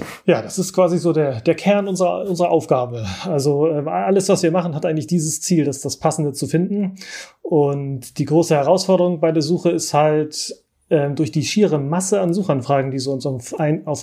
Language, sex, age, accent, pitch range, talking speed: German, male, 30-49, German, 145-175 Hz, 180 wpm